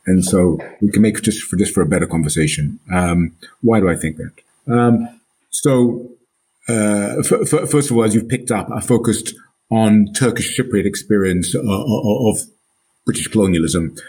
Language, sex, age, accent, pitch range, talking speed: English, male, 50-69, British, 95-115 Hz, 175 wpm